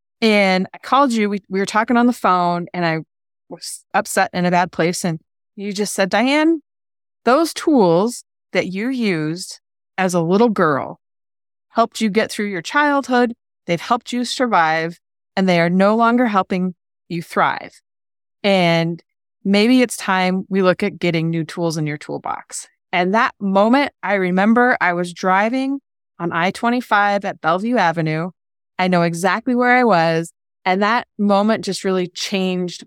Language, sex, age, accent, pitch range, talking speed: English, female, 30-49, American, 170-215 Hz, 165 wpm